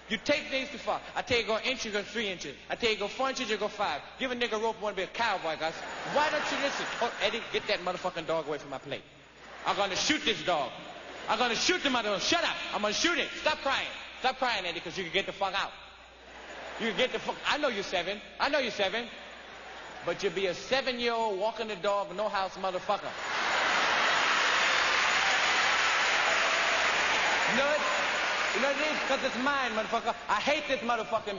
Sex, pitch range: male, 215-300 Hz